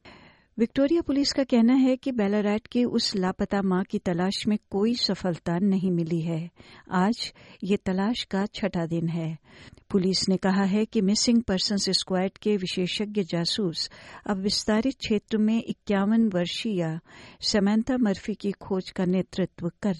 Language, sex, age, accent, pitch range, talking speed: Hindi, female, 60-79, native, 175-220 Hz, 150 wpm